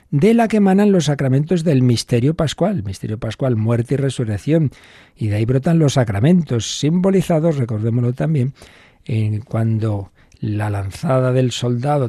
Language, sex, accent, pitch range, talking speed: Spanish, male, Spanish, 105-145 Hz, 145 wpm